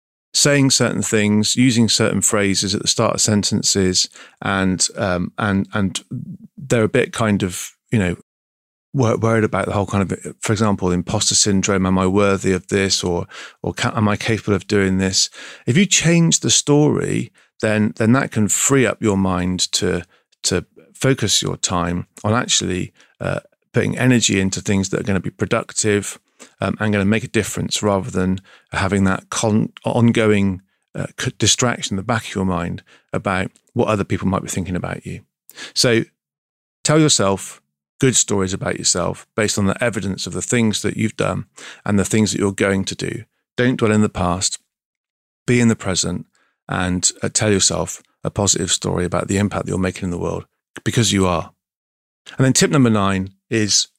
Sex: male